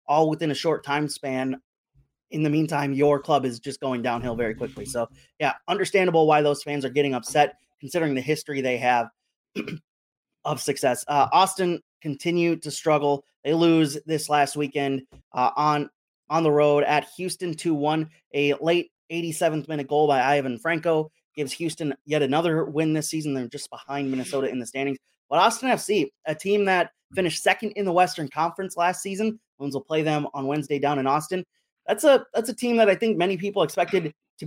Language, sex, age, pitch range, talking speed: English, male, 30-49, 140-165 Hz, 185 wpm